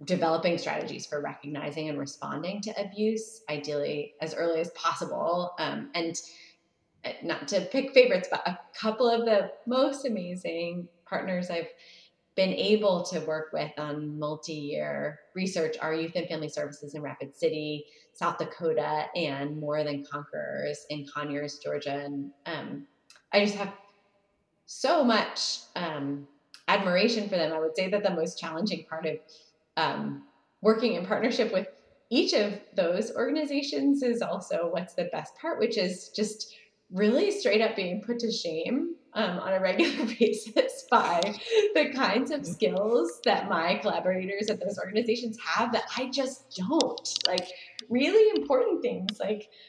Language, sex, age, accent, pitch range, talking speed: English, female, 30-49, American, 160-225 Hz, 150 wpm